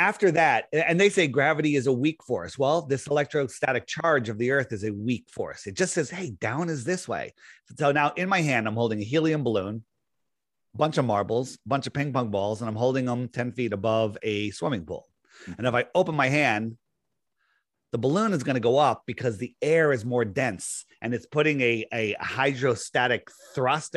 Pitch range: 115-145 Hz